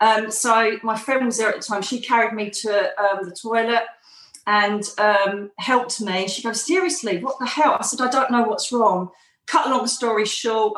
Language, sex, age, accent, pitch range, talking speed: English, female, 40-59, British, 205-240 Hz, 210 wpm